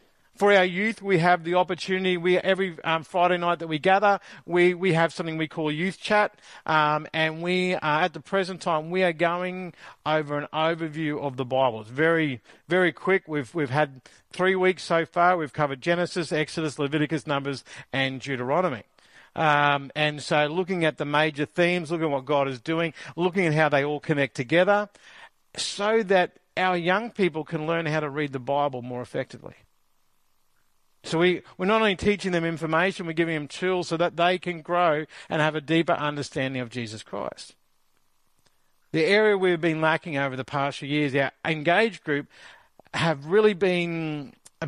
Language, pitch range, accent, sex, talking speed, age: English, 150-180 Hz, Australian, male, 180 wpm, 50-69